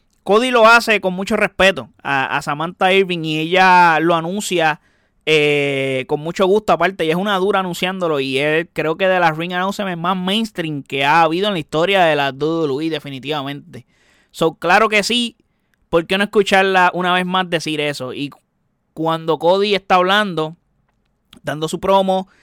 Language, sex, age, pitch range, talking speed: Spanish, male, 20-39, 155-195 Hz, 175 wpm